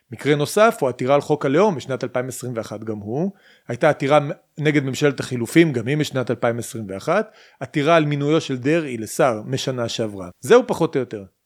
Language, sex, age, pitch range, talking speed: Hebrew, male, 30-49, 130-180 Hz, 170 wpm